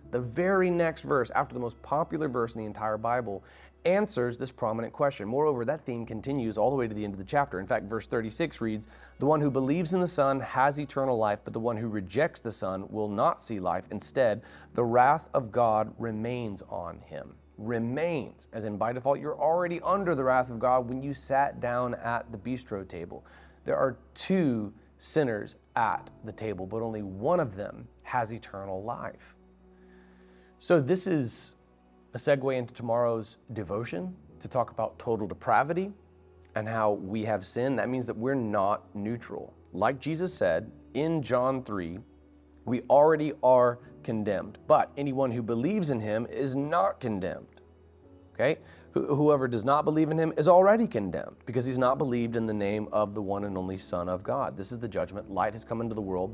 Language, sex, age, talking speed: English, male, 30-49, 190 wpm